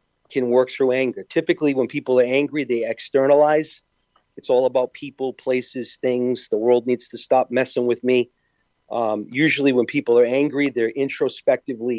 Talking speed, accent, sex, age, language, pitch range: 165 wpm, American, male, 40-59, English, 120-150 Hz